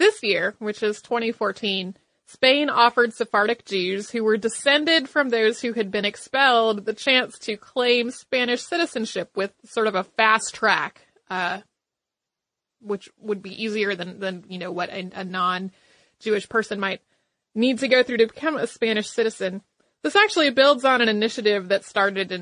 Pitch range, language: 195-240 Hz, English